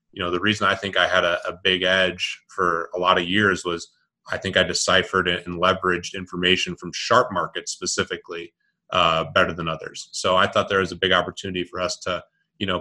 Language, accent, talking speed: English, American, 215 wpm